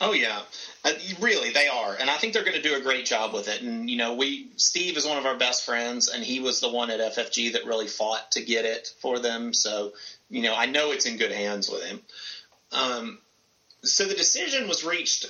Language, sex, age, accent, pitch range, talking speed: English, male, 30-49, American, 120-150 Hz, 235 wpm